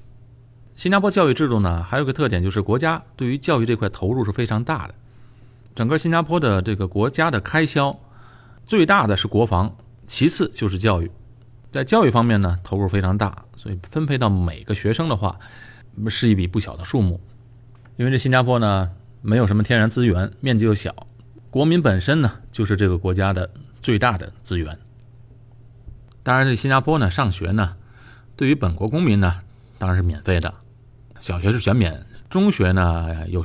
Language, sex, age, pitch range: Chinese, male, 30-49, 100-120 Hz